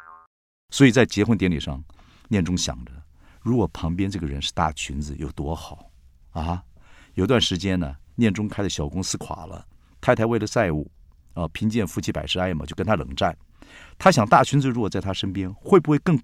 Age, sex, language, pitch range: 50-69, male, Chinese, 70-115 Hz